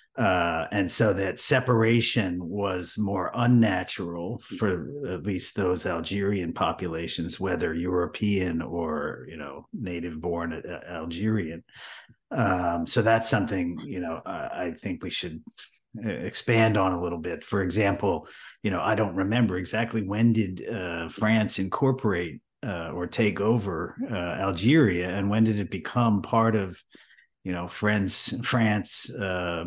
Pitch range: 90-115 Hz